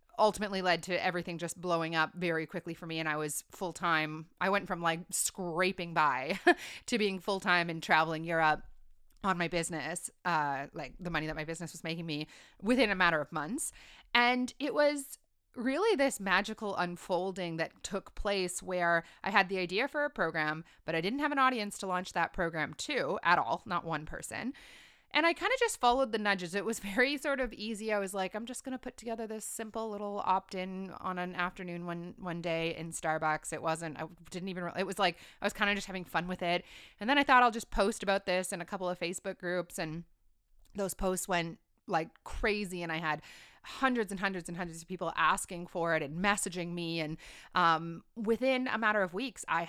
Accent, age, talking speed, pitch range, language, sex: American, 30-49, 215 wpm, 165-210 Hz, English, female